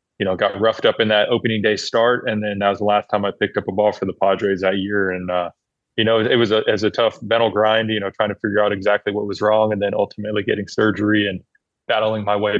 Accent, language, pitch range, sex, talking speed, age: American, English, 100-110 Hz, male, 280 wpm, 20-39